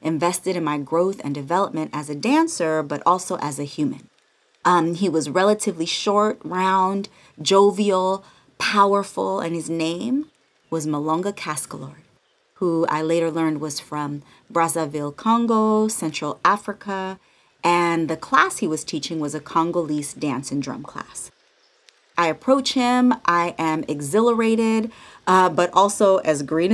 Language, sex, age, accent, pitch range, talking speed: English, female, 30-49, American, 160-220 Hz, 140 wpm